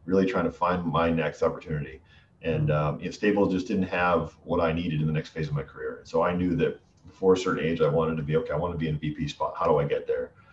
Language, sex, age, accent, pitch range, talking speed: English, male, 40-59, American, 80-90 Hz, 295 wpm